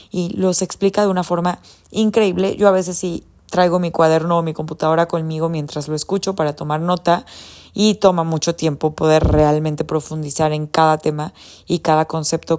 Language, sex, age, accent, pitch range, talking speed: Spanish, female, 20-39, Mexican, 165-195 Hz, 175 wpm